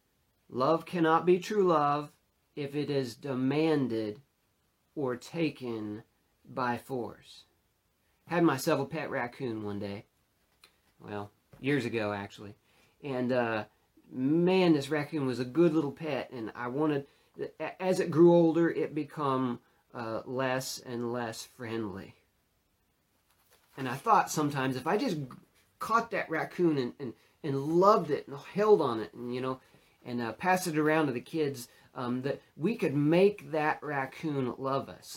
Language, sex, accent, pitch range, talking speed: English, male, American, 115-160 Hz, 150 wpm